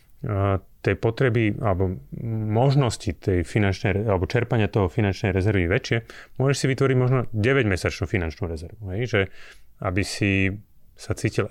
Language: Slovak